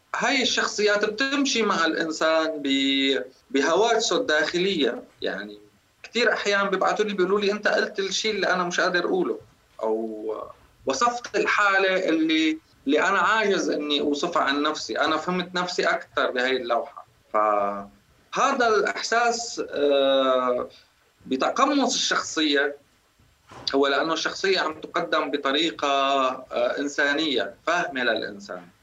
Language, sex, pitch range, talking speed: Arabic, male, 135-200 Hz, 105 wpm